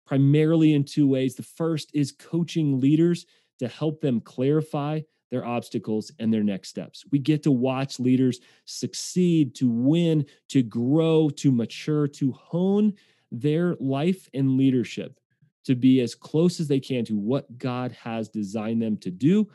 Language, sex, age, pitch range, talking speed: English, male, 30-49, 115-155 Hz, 160 wpm